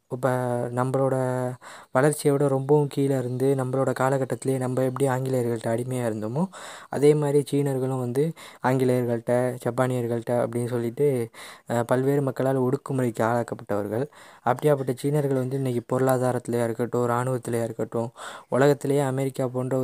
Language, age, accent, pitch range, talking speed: Tamil, 20-39, native, 120-135 Hz, 110 wpm